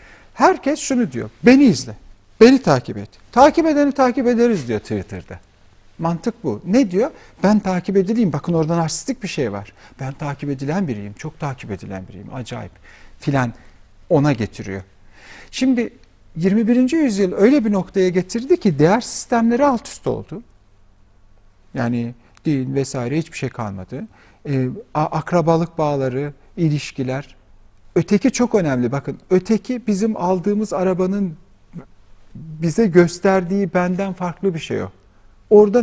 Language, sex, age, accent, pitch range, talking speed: Turkish, male, 50-69, native, 125-205 Hz, 130 wpm